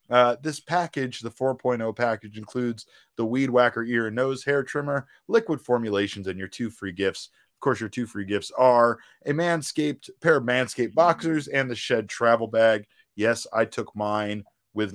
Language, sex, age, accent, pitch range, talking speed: English, male, 30-49, American, 100-125 Hz, 180 wpm